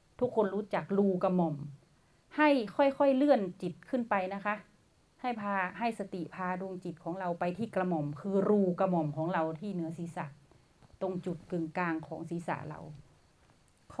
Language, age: Thai, 30-49